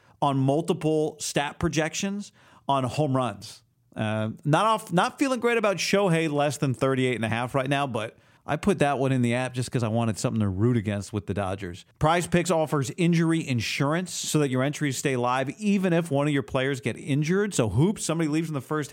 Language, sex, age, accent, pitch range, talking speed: English, male, 40-59, American, 125-165 Hz, 215 wpm